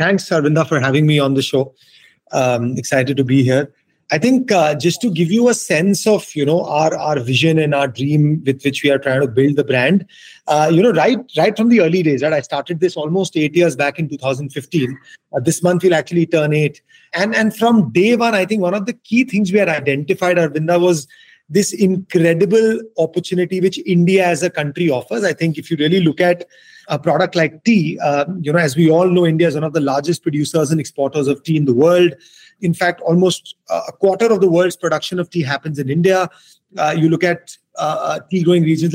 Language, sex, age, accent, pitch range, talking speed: English, male, 30-49, Indian, 150-185 Hz, 225 wpm